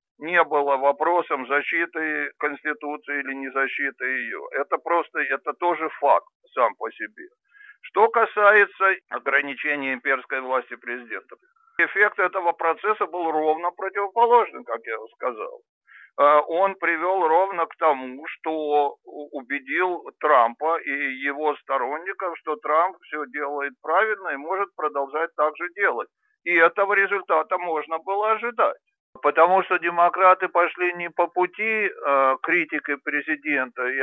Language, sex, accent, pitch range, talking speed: Russian, male, native, 145-195 Hz, 125 wpm